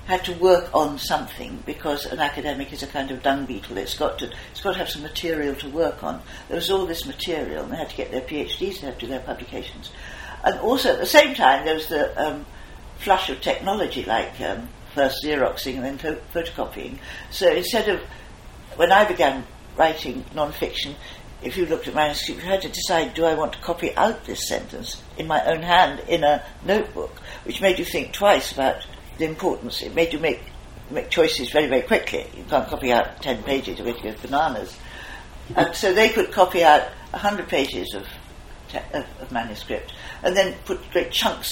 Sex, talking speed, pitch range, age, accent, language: female, 200 wpm, 140-185 Hz, 60-79, British, English